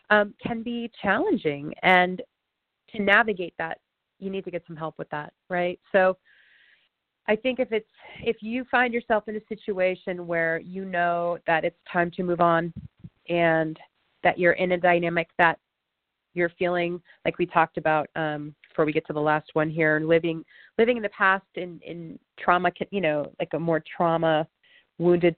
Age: 30-49